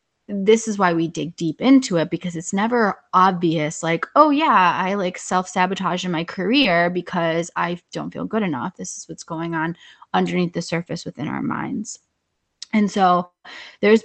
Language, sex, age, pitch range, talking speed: English, female, 20-39, 165-190 Hz, 175 wpm